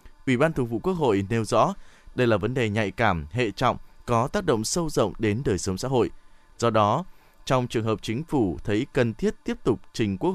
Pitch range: 105-150 Hz